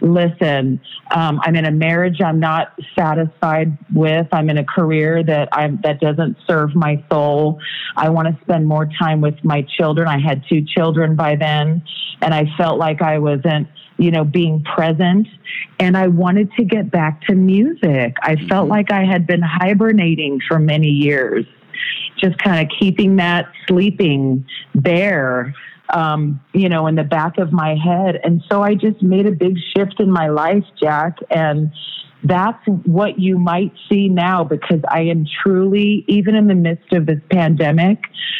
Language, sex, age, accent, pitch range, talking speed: English, female, 40-59, American, 155-185 Hz, 170 wpm